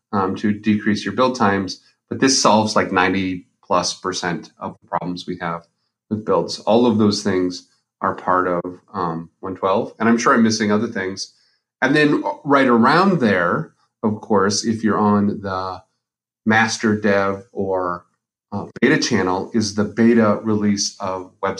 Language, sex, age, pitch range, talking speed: English, male, 30-49, 100-115 Hz, 165 wpm